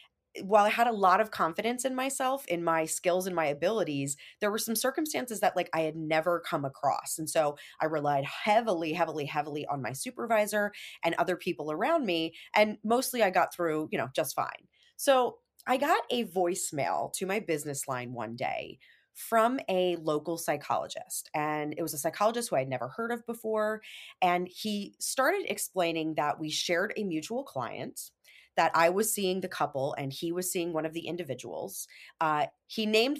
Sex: female